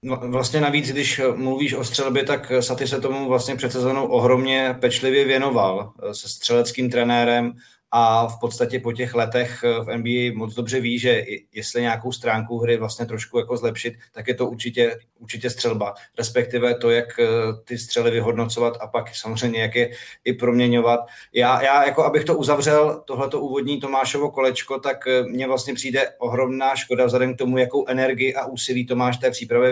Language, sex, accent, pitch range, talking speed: Czech, male, native, 115-130 Hz, 170 wpm